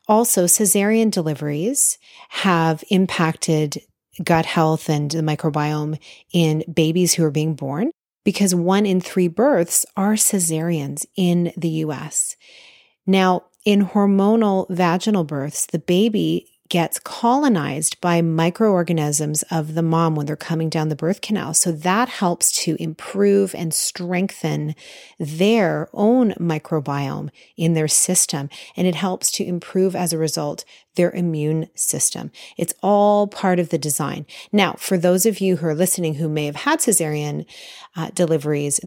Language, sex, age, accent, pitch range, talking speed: English, female, 30-49, American, 160-195 Hz, 145 wpm